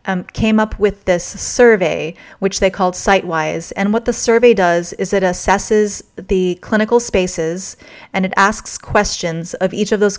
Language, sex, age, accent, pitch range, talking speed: English, female, 30-49, American, 185-225 Hz, 170 wpm